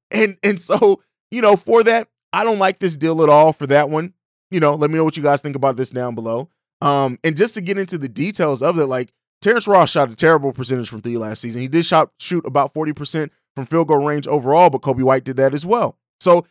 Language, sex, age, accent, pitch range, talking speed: English, male, 20-39, American, 140-195 Hz, 255 wpm